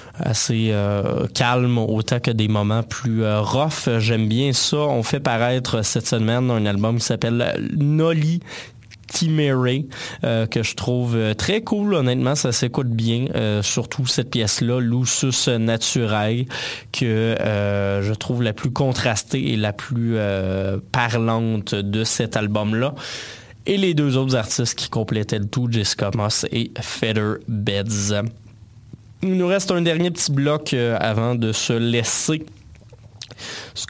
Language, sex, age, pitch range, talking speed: French, male, 20-39, 110-140 Hz, 145 wpm